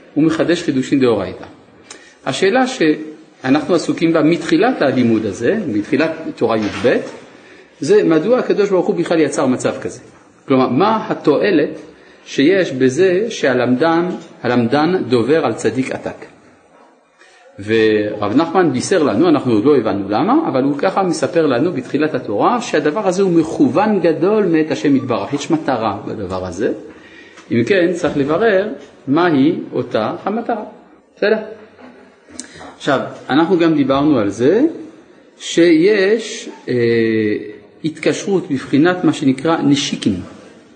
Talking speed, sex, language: 120 wpm, male, Hebrew